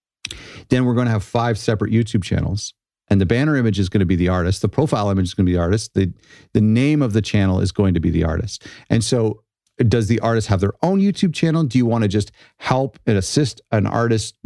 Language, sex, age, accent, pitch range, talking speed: English, male, 40-59, American, 100-120 Hz, 250 wpm